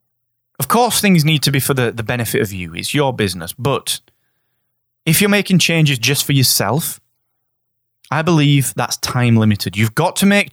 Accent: British